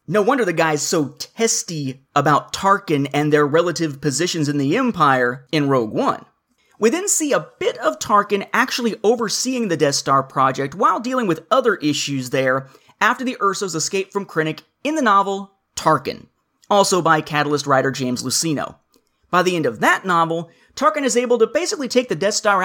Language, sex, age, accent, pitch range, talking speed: English, male, 30-49, American, 150-220 Hz, 180 wpm